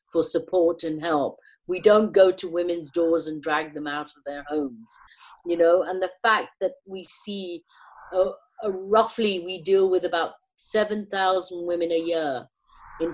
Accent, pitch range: British, 165-215 Hz